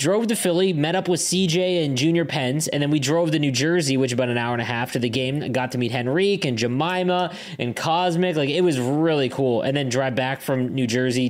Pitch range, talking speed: 120-150 Hz, 255 wpm